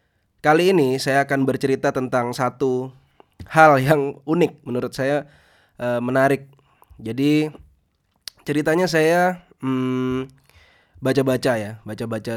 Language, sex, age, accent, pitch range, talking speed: Indonesian, male, 20-39, native, 110-135 Hz, 95 wpm